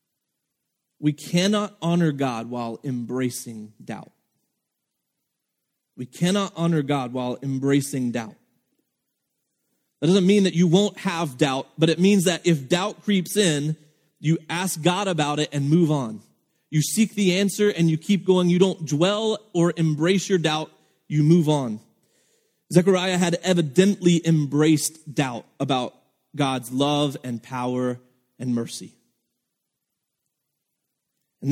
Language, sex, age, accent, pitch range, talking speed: English, male, 30-49, American, 130-175 Hz, 130 wpm